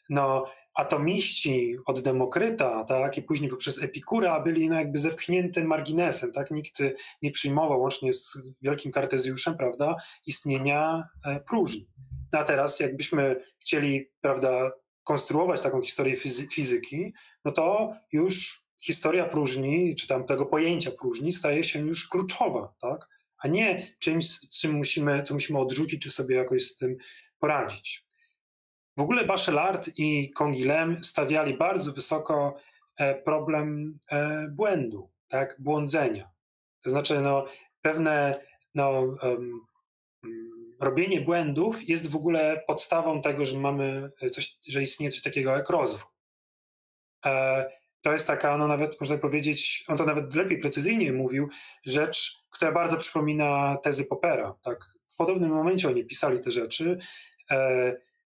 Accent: native